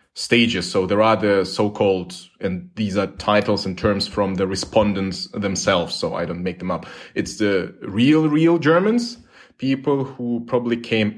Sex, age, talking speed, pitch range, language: male, 30-49, 165 wpm, 100-125 Hz, German